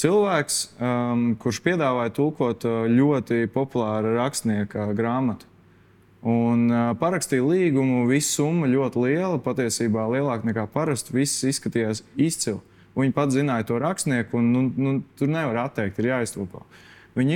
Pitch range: 110-135 Hz